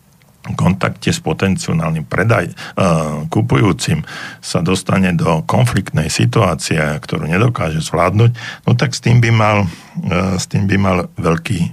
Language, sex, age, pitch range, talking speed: Slovak, male, 60-79, 85-125 Hz, 130 wpm